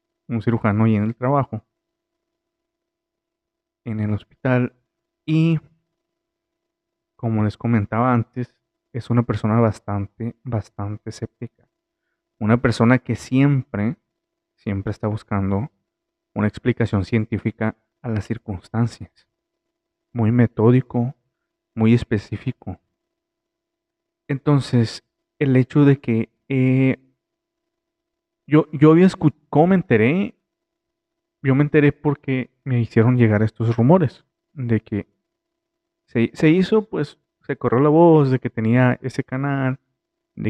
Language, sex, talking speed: Spanish, male, 110 wpm